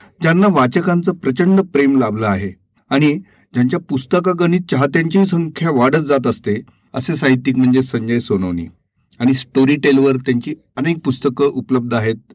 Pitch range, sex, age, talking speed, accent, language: 120-160 Hz, male, 40-59, 130 wpm, native, Marathi